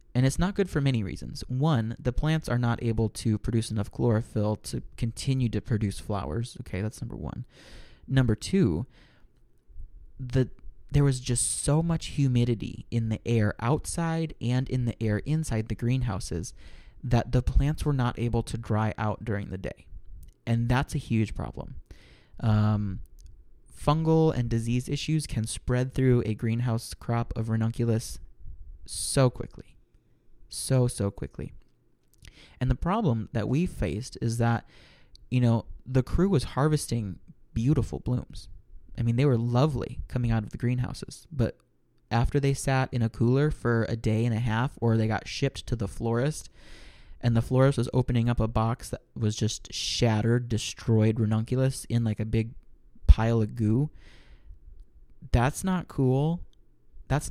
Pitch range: 110-130 Hz